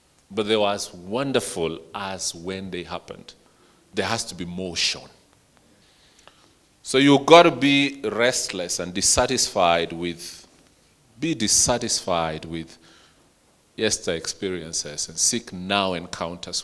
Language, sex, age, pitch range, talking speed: English, male, 40-59, 85-115 Hz, 115 wpm